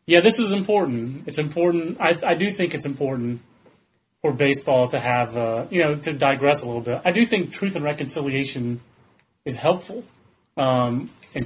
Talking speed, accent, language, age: 180 wpm, American, English, 30-49